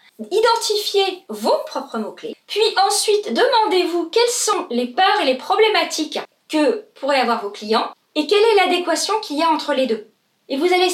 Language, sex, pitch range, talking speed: English, female, 265-390 Hz, 175 wpm